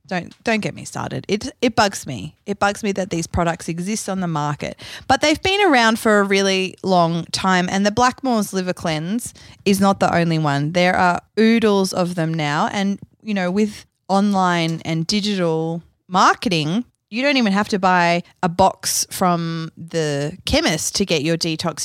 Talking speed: 185 wpm